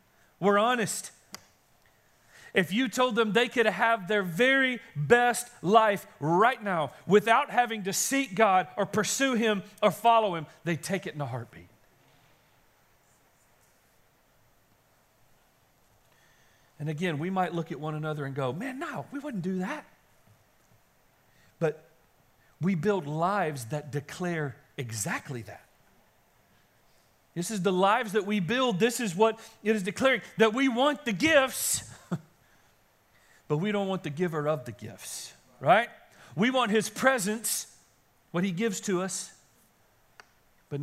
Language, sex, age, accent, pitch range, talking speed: English, male, 40-59, American, 145-215 Hz, 140 wpm